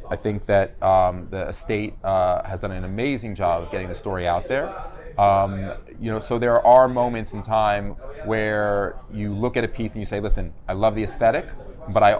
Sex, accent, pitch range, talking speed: male, American, 100-115 Hz, 210 wpm